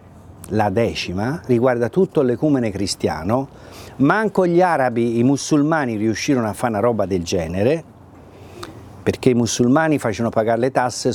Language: Italian